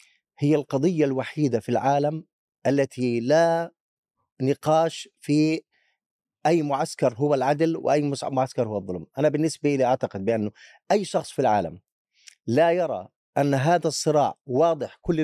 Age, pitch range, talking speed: 30-49, 125-165 Hz, 130 wpm